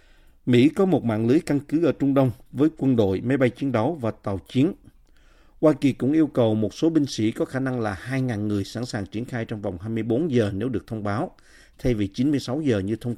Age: 50-69